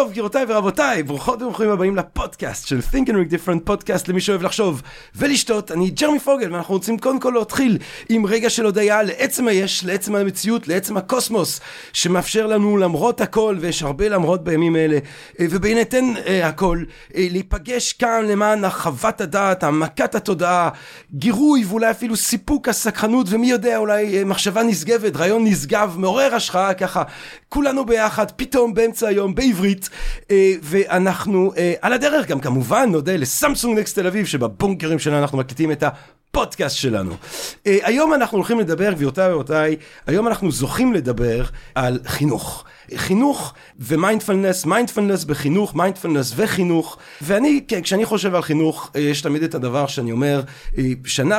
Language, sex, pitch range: Hebrew, male, 150-220 Hz